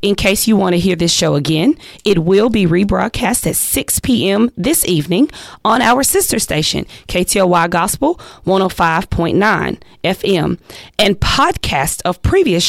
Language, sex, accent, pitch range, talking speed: English, female, American, 170-225 Hz, 140 wpm